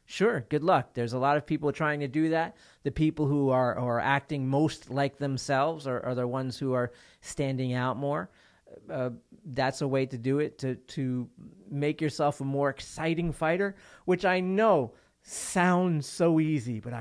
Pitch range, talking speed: 120-150 Hz, 185 wpm